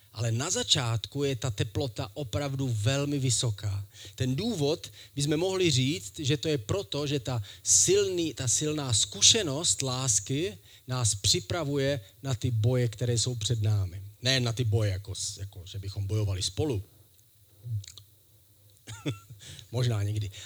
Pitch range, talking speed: 110-135 Hz, 135 wpm